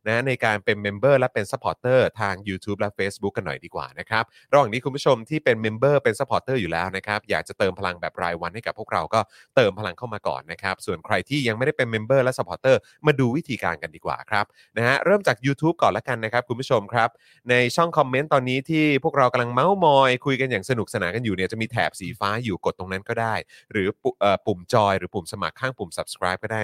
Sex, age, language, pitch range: male, 30-49, Thai, 100-130 Hz